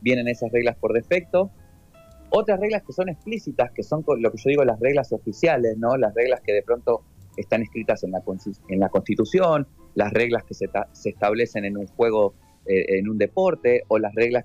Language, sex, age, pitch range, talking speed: Spanish, male, 30-49, 100-125 Hz, 200 wpm